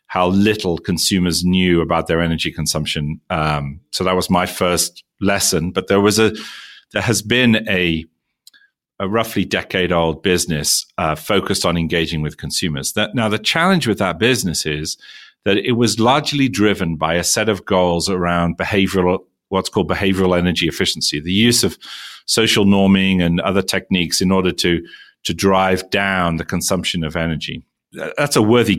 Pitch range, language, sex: 85-110 Hz, English, male